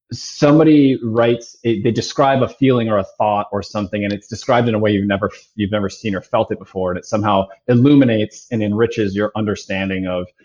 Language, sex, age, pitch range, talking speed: English, male, 20-39, 100-120 Hz, 200 wpm